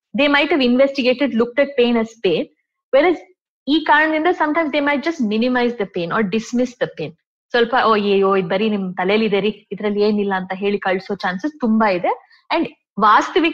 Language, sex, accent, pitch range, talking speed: Kannada, female, native, 205-280 Hz, 190 wpm